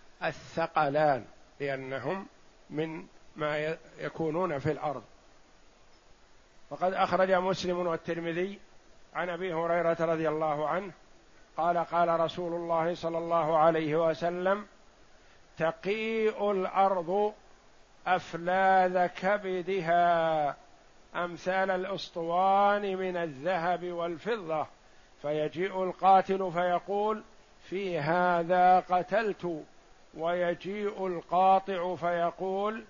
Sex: male